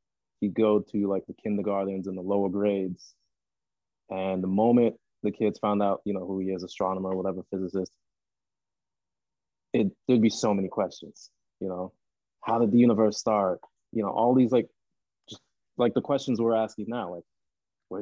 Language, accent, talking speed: English, American, 175 wpm